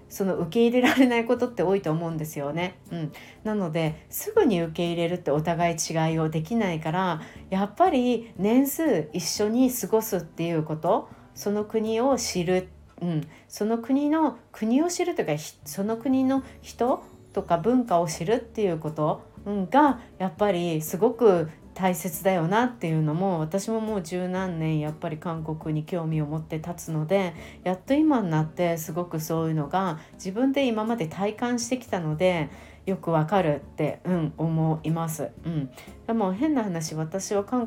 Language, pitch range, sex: Japanese, 160-210 Hz, female